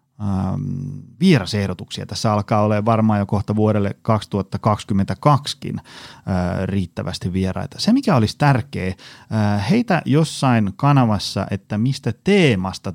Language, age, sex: Finnish, 30-49, male